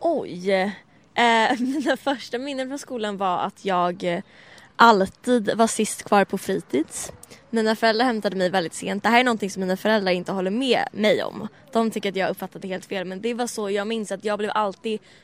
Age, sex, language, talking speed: 20-39, female, Swedish, 205 wpm